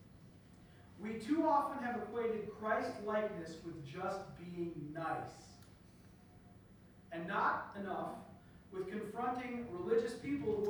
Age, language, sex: 40-59, Finnish, male